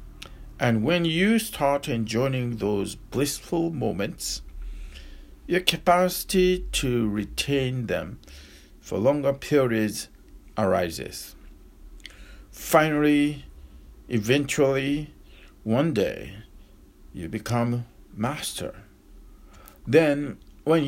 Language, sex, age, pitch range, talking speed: English, male, 60-79, 100-145 Hz, 75 wpm